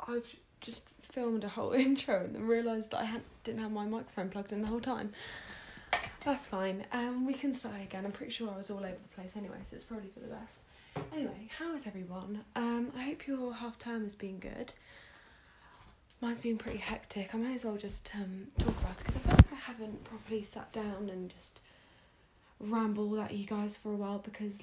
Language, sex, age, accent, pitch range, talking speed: English, female, 10-29, British, 200-235 Hz, 215 wpm